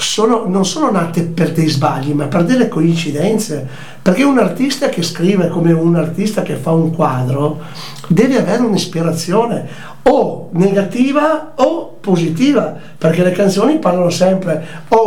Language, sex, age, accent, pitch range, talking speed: Italian, male, 60-79, native, 160-205 Hz, 140 wpm